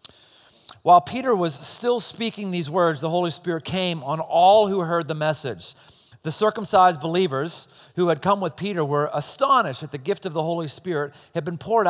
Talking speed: 185 wpm